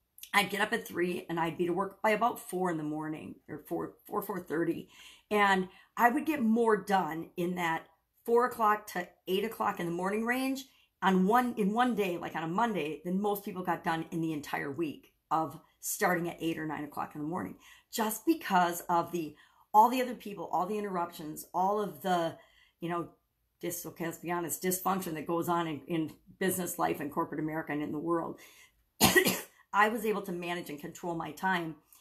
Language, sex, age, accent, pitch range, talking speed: English, female, 50-69, American, 165-215 Hz, 210 wpm